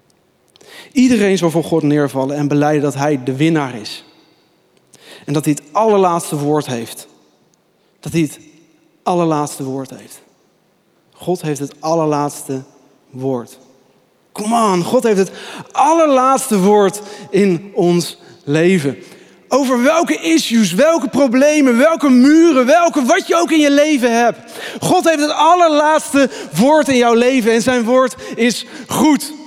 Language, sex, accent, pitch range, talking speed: Dutch, male, Dutch, 155-260 Hz, 140 wpm